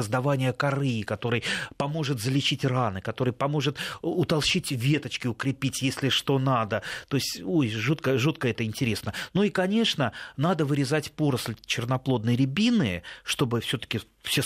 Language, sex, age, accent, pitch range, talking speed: Russian, male, 30-49, native, 120-160 Hz, 135 wpm